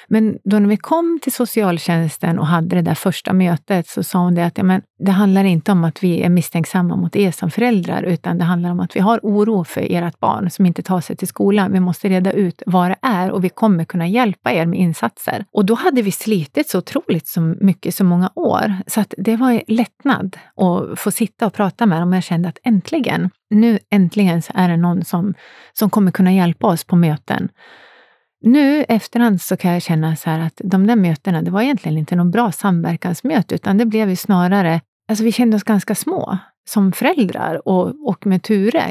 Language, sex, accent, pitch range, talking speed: Swedish, female, native, 175-220 Hz, 220 wpm